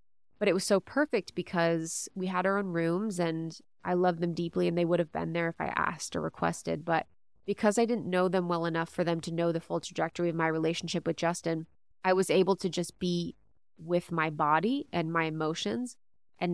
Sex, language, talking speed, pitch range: female, English, 220 wpm, 165-185 Hz